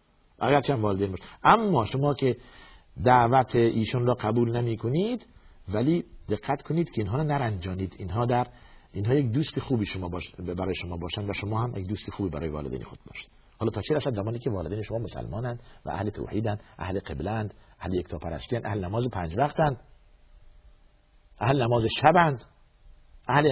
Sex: male